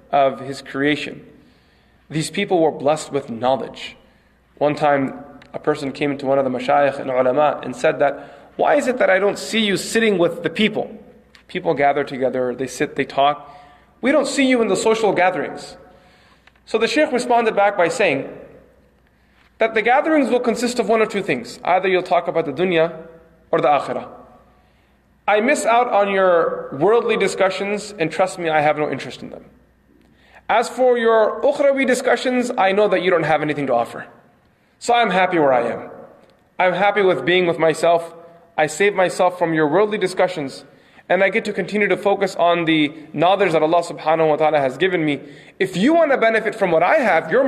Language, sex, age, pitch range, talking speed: English, male, 30-49, 140-205 Hz, 195 wpm